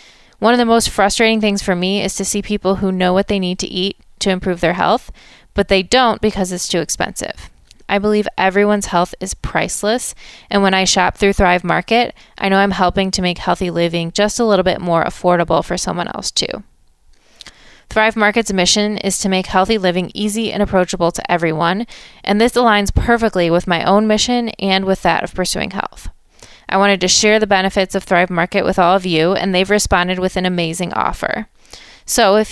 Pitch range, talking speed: 180-210 Hz, 205 wpm